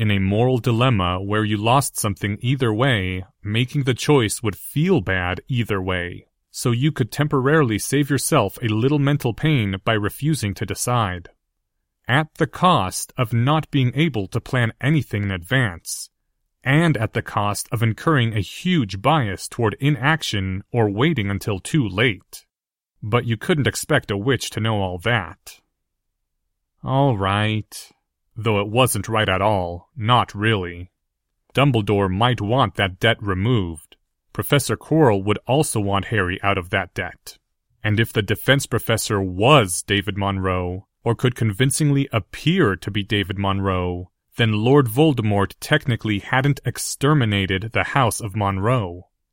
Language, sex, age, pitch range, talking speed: English, male, 30-49, 100-135 Hz, 150 wpm